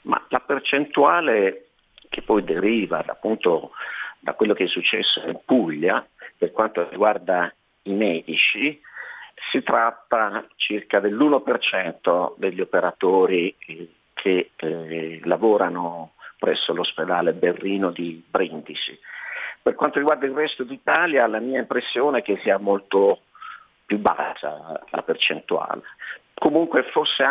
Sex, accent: male, native